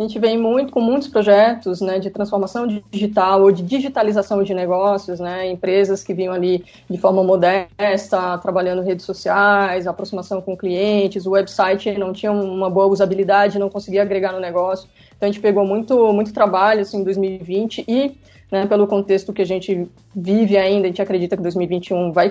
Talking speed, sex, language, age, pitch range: 180 wpm, female, Portuguese, 20-39, 190-225 Hz